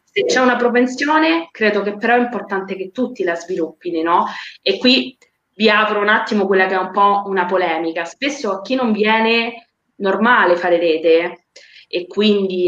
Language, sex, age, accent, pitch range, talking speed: Italian, female, 20-39, native, 190-245 Hz, 175 wpm